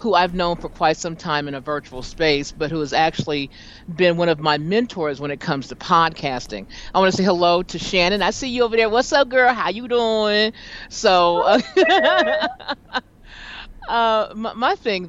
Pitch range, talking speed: 150-210 Hz, 195 wpm